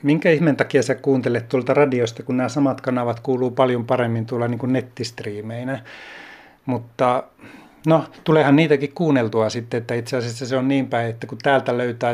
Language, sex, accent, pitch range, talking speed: Finnish, male, native, 115-135 Hz, 175 wpm